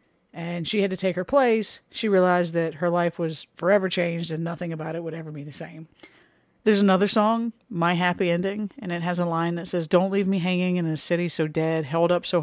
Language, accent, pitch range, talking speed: English, American, 150-180 Hz, 235 wpm